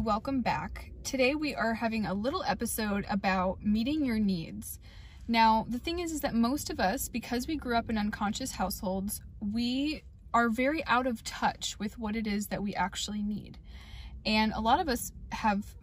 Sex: female